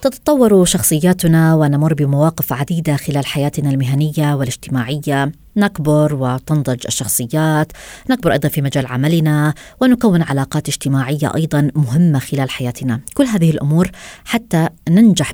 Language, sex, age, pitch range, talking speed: Arabic, female, 20-39, 150-190 Hz, 115 wpm